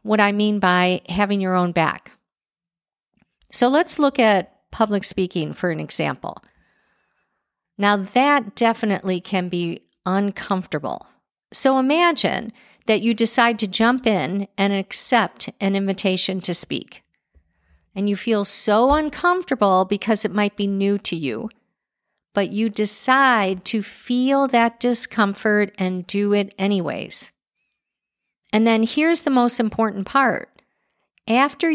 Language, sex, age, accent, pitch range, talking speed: English, female, 50-69, American, 185-240 Hz, 130 wpm